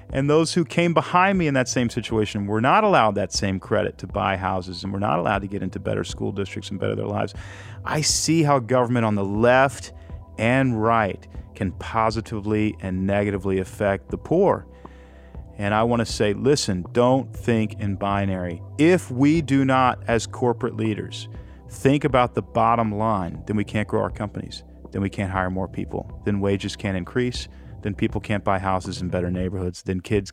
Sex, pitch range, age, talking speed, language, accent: male, 95-115 Hz, 40-59, 190 wpm, English, American